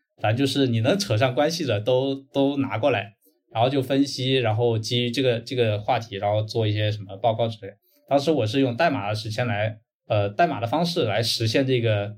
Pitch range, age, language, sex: 110-160 Hz, 20-39, Chinese, male